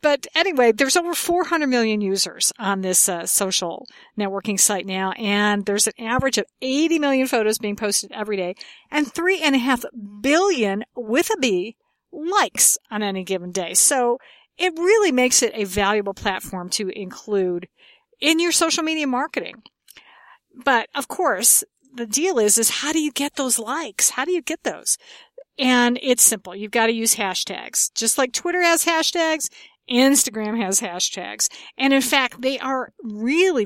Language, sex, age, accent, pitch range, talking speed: English, female, 50-69, American, 215-315 Hz, 170 wpm